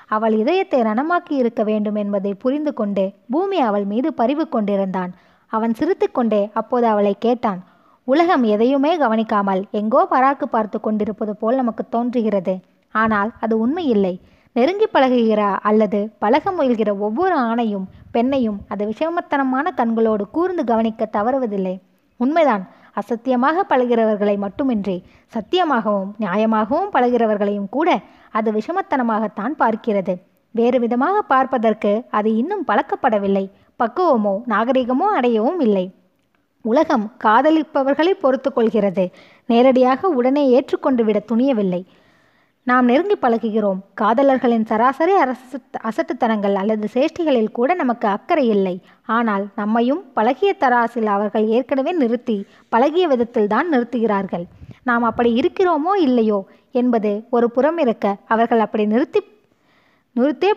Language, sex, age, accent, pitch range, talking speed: Tamil, female, 20-39, native, 210-275 Hz, 105 wpm